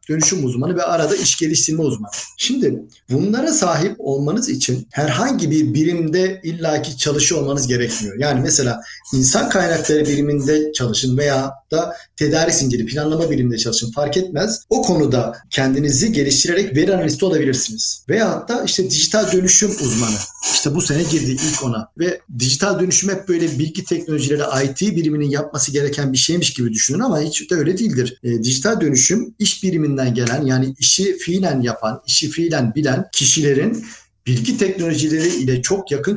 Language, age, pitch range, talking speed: Turkish, 50-69, 130-170 Hz, 155 wpm